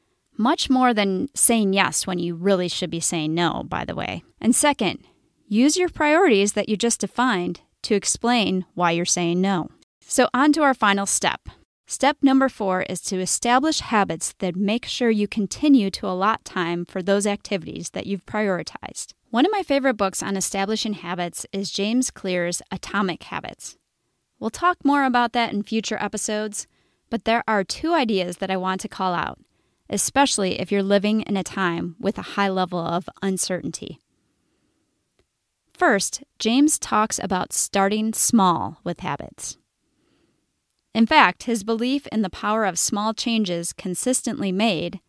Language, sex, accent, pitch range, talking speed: English, female, American, 190-250 Hz, 160 wpm